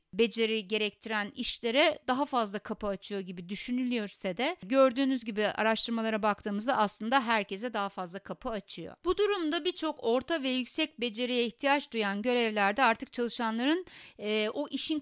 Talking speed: 140 wpm